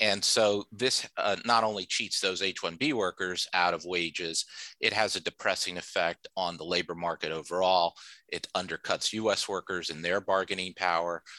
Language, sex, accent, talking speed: English, male, American, 165 wpm